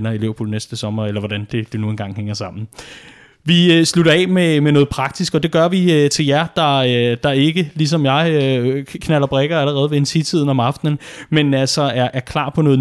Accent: native